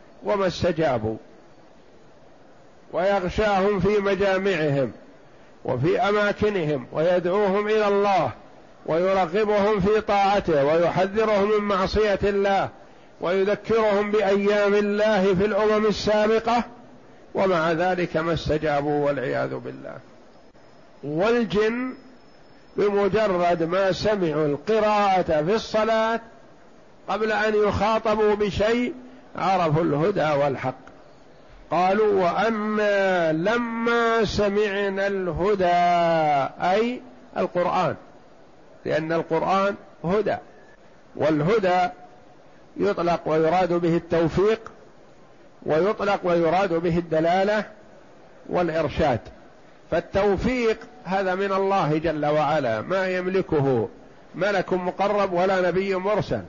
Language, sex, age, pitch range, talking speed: Arabic, male, 50-69, 170-210 Hz, 80 wpm